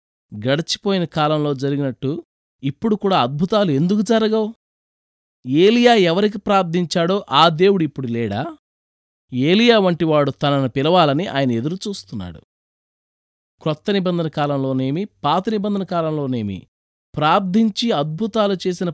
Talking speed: 90 wpm